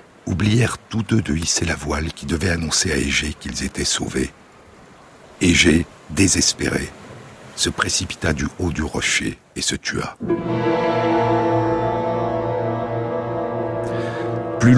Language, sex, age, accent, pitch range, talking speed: French, male, 60-79, French, 85-120 Hz, 110 wpm